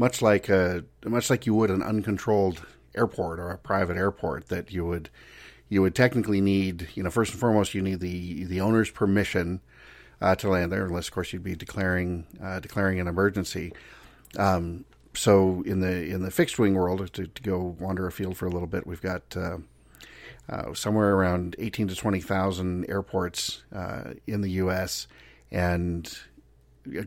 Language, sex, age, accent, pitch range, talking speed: English, male, 50-69, American, 90-100 Hz, 180 wpm